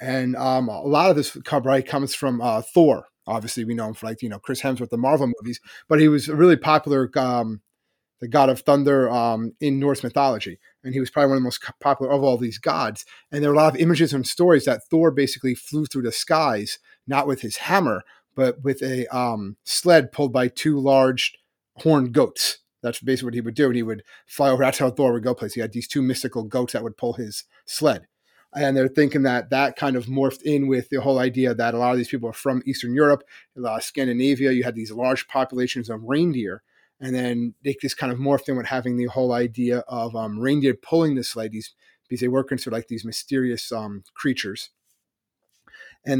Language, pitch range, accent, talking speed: English, 120-140 Hz, American, 225 wpm